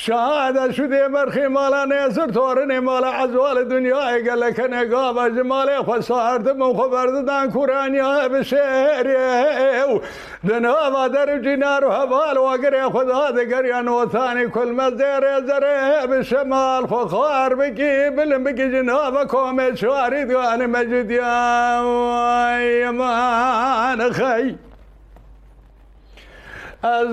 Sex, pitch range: male, 250-275 Hz